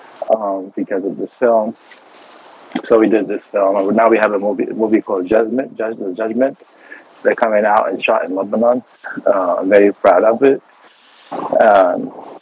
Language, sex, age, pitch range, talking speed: Arabic, male, 20-39, 100-125 Hz, 170 wpm